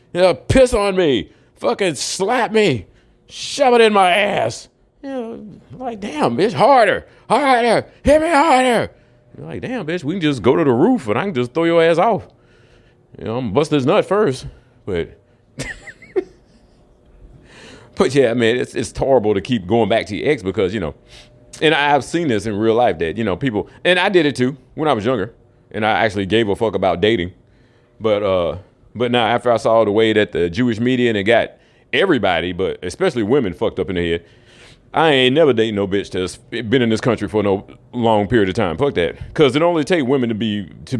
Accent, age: American, 40-59